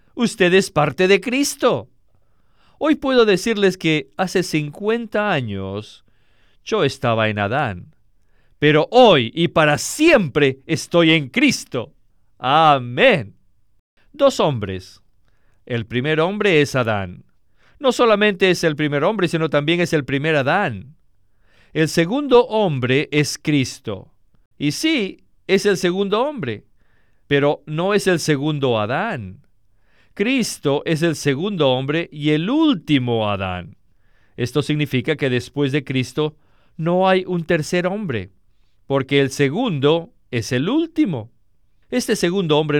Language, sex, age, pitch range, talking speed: Spanish, male, 50-69, 120-180 Hz, 125 wpm